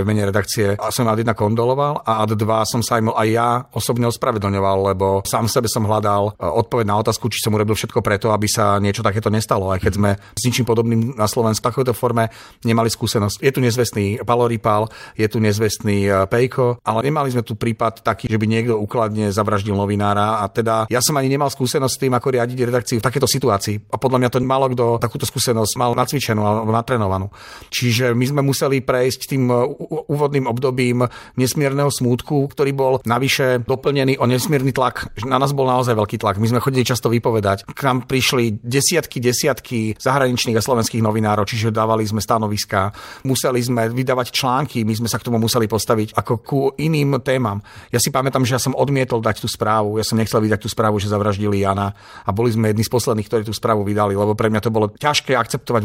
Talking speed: 200 wpm